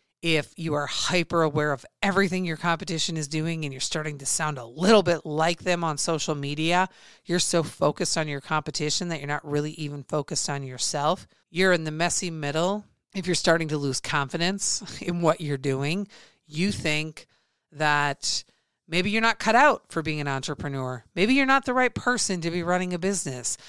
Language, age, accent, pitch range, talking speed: English, 40-59, American, 150-180 Hz, 195 wpm